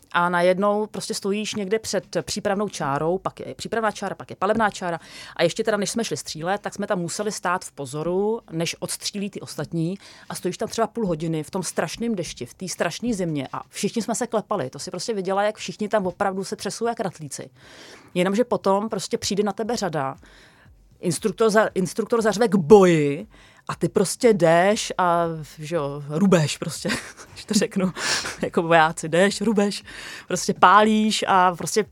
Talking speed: 180 wpm